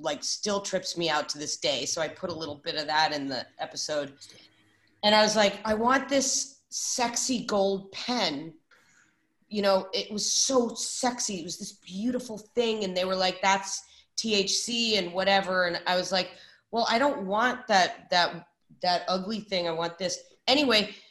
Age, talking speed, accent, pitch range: 30-49, 185 wpm, American, 180-235 Hz